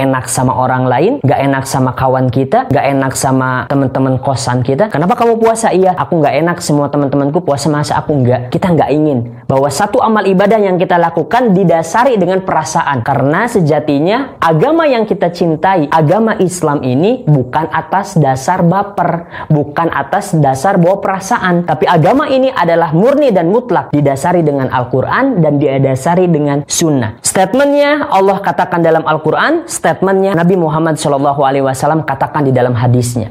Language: Indonesian